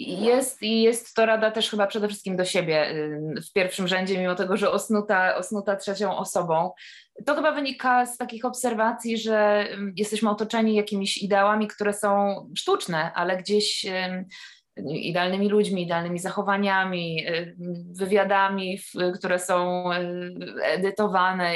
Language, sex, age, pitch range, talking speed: Polish, female, 20-39, 180-210 Hz, 120 wpm